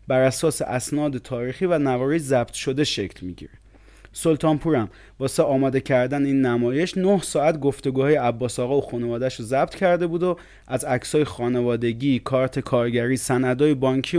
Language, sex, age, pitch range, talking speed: English, male, 30-49, 125-155 Hz, 145 wpm